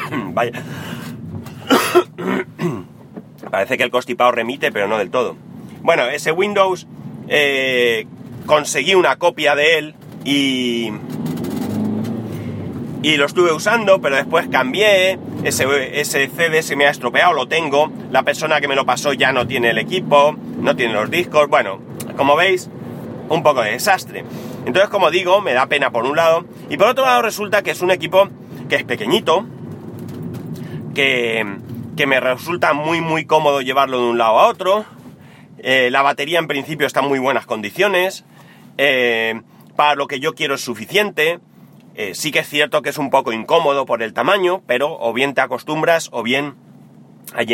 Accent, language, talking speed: Spanish, Spanish, 165 wpm